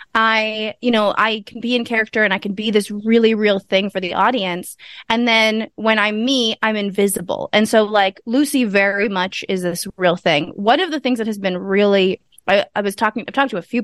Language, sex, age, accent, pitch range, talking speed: English, female, 20-39, American, 195-235 Hz, 230 wpm